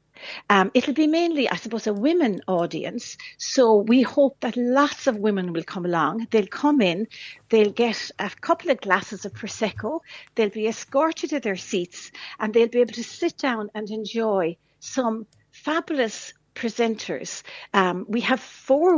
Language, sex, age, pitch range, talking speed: English, female, 60-79, 185-260 Hz, 170 wpm